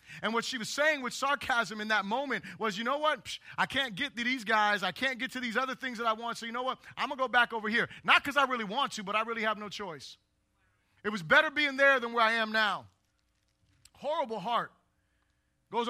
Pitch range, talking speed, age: 210-285 Hz, 250 wpm, 30-49